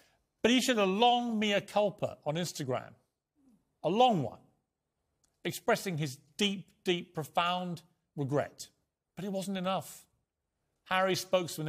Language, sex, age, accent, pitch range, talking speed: English, male, 40-59, British, 145-190 Hz, 125 wpm